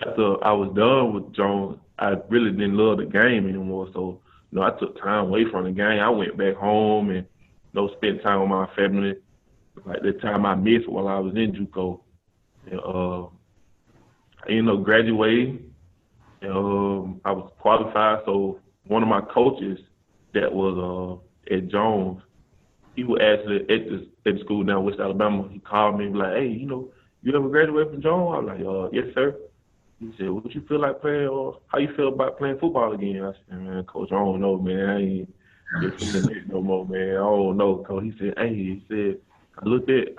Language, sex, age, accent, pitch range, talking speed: English, male, 20-39, American, 95-115 Hz, 210 wpm